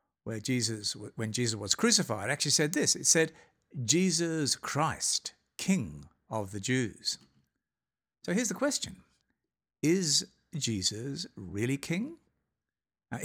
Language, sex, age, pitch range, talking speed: English, male, 60-79, 125-190 Hz, 120 wpm